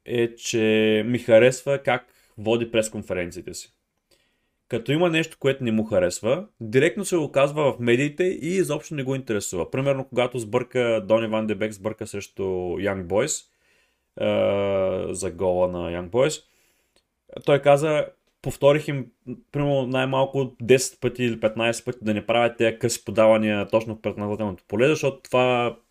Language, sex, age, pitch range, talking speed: Bulgarian, male, 20-39, 110-135 Hz, 150 wpm